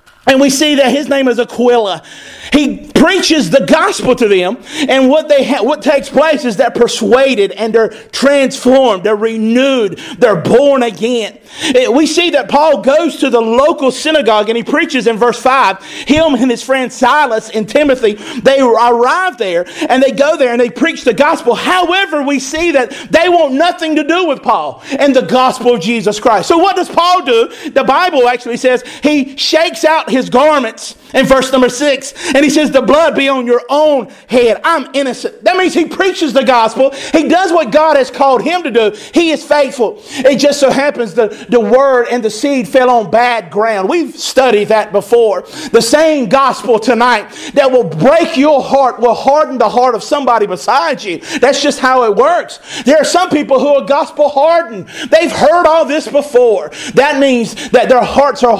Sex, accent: male, American